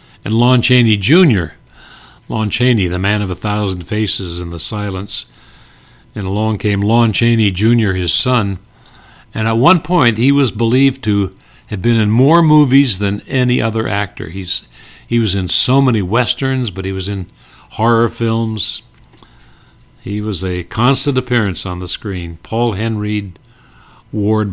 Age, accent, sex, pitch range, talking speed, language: 60-79, American, male, 100-125 Hz, 155 wpm, English